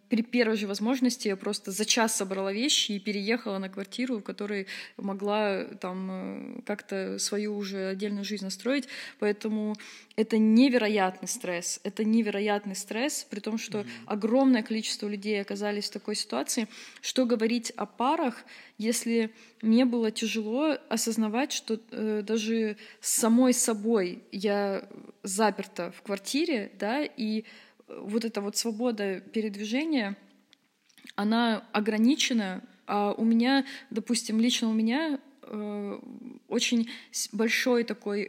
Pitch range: 205-240 Hz